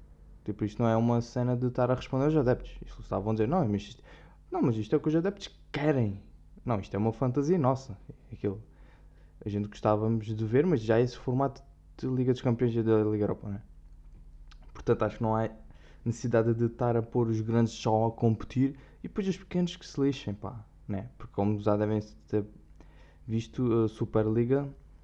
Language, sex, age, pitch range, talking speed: Portuguese, male, 10-29, 105-130 Hz, 205 wpm